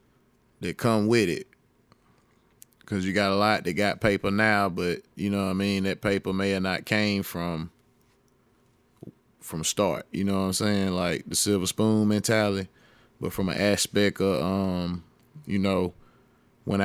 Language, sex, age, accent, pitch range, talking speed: English, male, 20-39, American, 95-105 Hz, 165 wpm